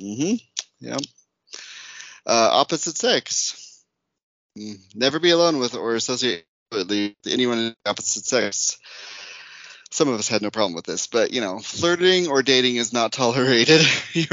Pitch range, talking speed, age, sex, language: 95-125 Hz, 140 wpm, 30-49, male, English